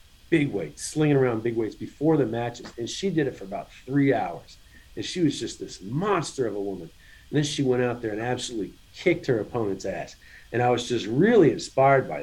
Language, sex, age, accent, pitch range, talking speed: English, male, 40-59, American, 105-130 Hz, 220 wpm